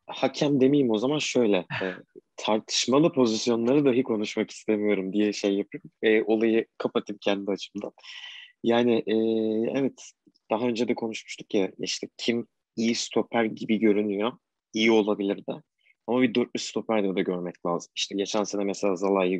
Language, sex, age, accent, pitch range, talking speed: Turkish, male, 30-49, native, 105-125 Hz, 155 wpm